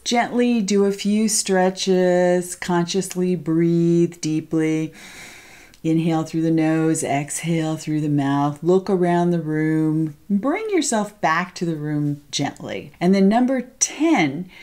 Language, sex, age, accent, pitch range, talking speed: English, female, 40-59, American, 165-215 Hz, 125 wpm